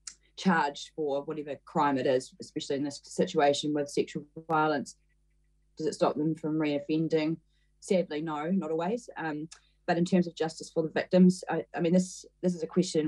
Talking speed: 185 wpm